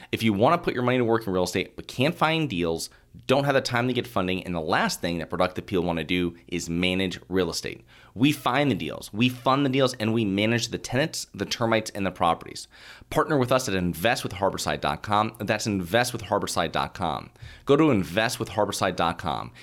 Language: English